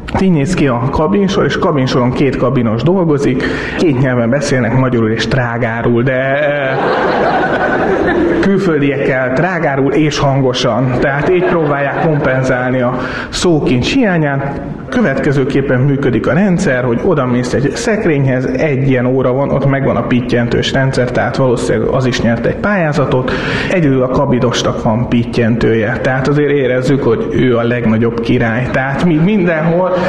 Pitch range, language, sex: 125-170 Hz, Hungarian, male